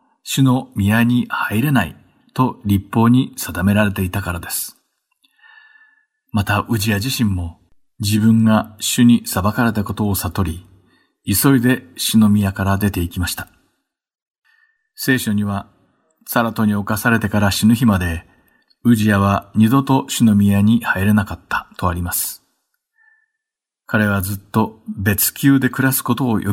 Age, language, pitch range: 50-69, Japanese, 100-125 Hz